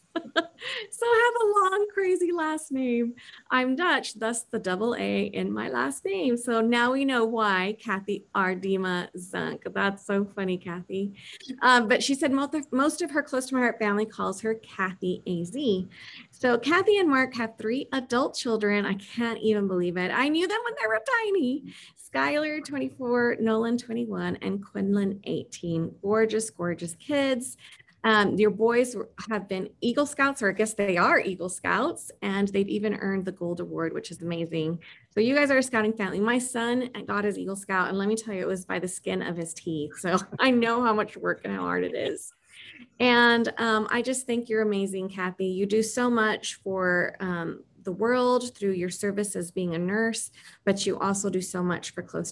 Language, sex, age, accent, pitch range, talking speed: English, female, 30-49, American, 190-250 Hz, 195 wpm